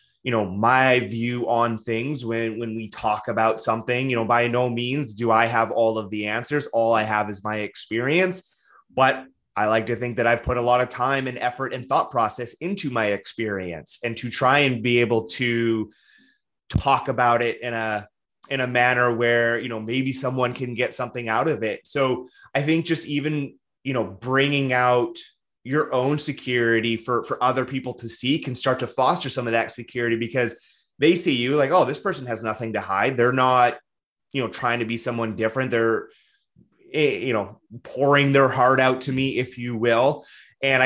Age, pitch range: 20-39, 115-135 Hz